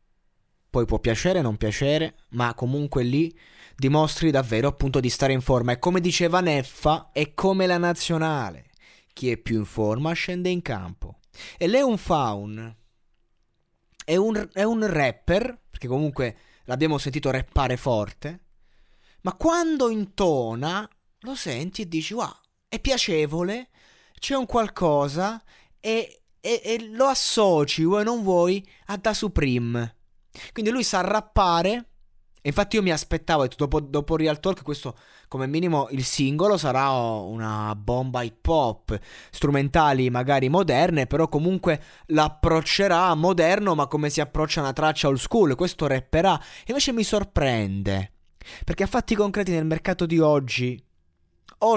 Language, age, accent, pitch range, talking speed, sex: Italian, 20-39, native, 125-185 Hz, 140 wpm, male